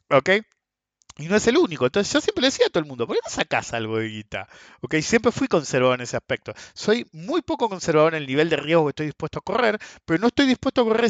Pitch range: 125-185 Hz